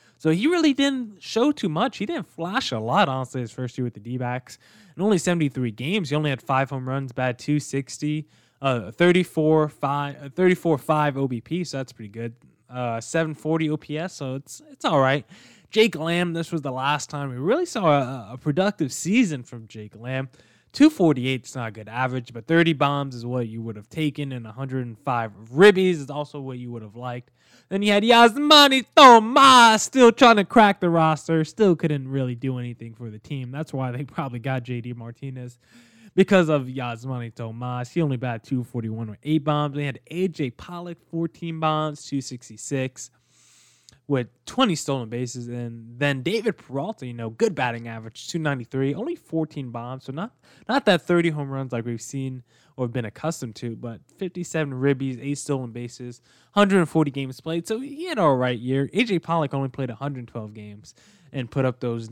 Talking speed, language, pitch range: 185 wpm, English, 125-165 Hz